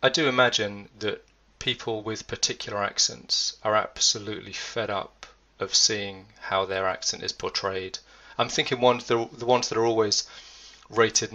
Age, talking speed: 30-49, 150 wpm